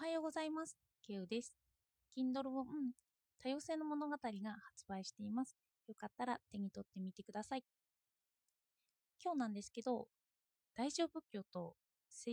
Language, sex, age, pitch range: Japanese, female, 20-39, 195-270 Hz